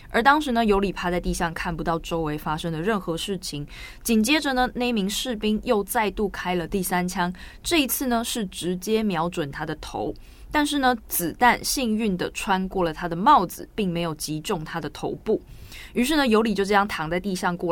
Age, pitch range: 20-39, 170-215 Hz